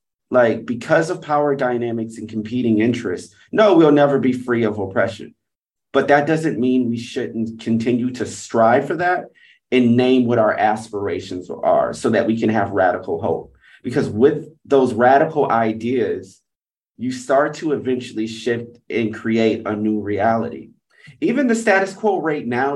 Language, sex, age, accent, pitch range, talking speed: English, male, 30-49, American, 115-160 Hz, 160 wpm